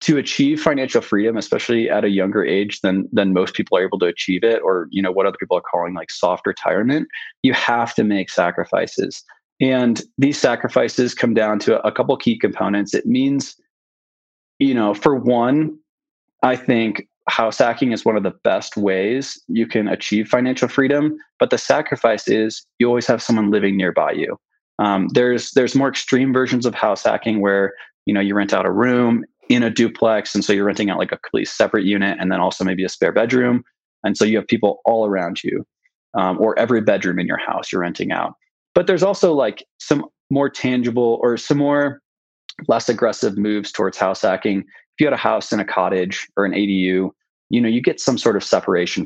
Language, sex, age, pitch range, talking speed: English, male, 20-39, 100-130 Hz, 205 wpm